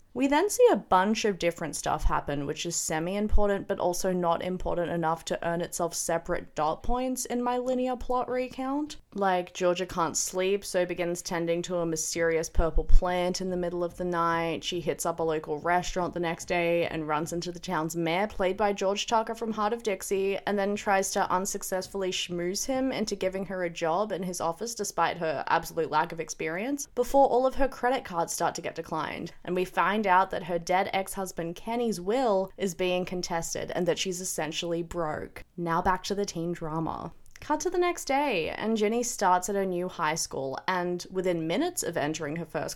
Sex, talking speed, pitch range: female, 200 wpm, 170-205 Hz